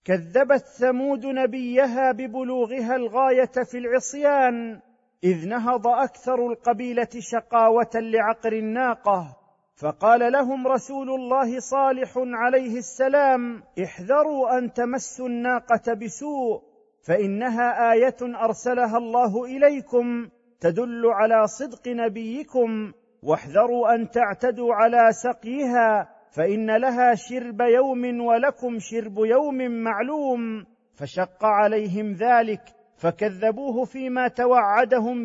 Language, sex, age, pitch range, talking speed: Arabic, male, 40-59, 215-250 Hz, 90 wpm